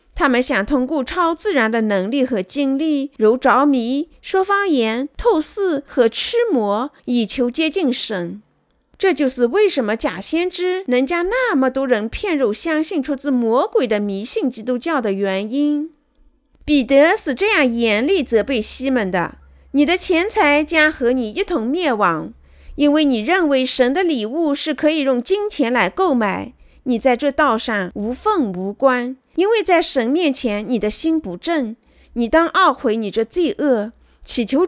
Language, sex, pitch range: Chinese, female, 230-320 Hz